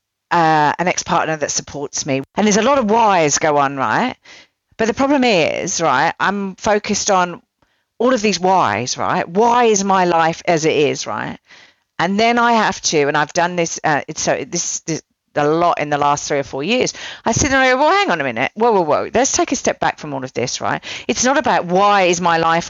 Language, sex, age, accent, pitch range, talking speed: English, female, 40-59, British, 160-220 Hz, 225 wpm